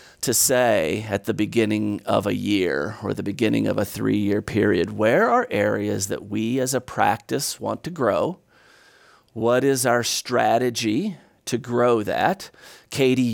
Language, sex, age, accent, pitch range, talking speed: English, male, 40-59, American, 110-130 Hz, 155 wpm